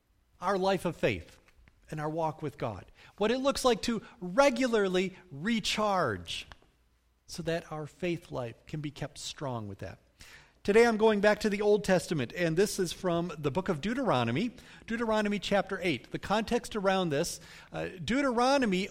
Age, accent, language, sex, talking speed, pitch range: 40-59, American, English, male, 165 wpm, 145-205 Hz